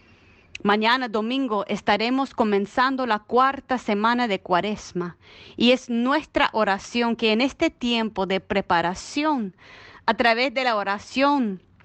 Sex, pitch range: female, 200-275 Hz